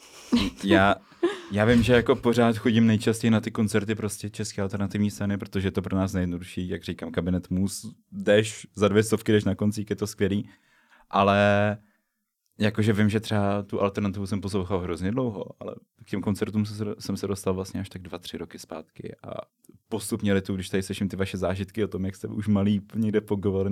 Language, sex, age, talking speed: Czech, male, 20-39, 190 wpm